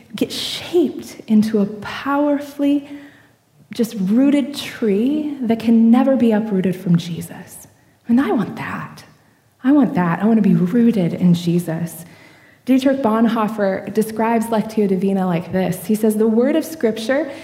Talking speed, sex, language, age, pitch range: 145 wpm, female, English, 20-39, 185-245 Hz